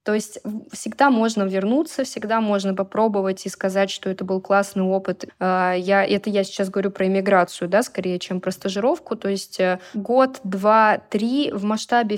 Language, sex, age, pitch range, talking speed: Russian, female, 20-39, 195-225 Hz, 170 wpm